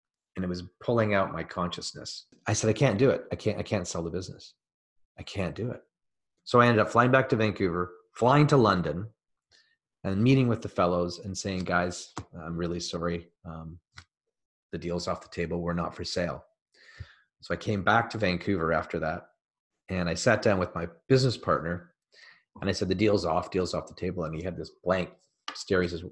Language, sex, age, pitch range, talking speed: English, male, 30-49, 90-110 Hz, 205 wpm